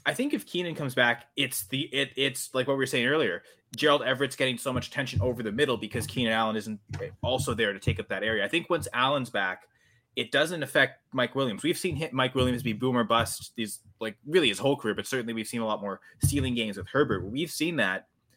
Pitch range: 110-135 Hz